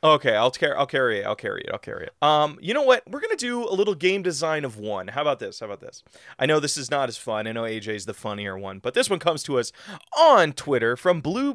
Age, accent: 30-49, American